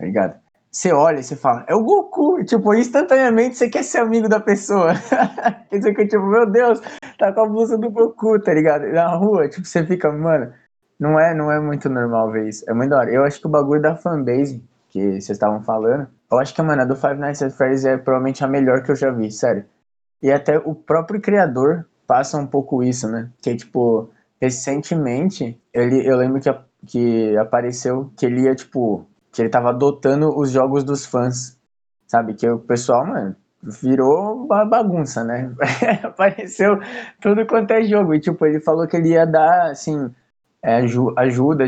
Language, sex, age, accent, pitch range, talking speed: Portuguese, male, 20-39, Brazilian, 125-185 Hz, 195 wpm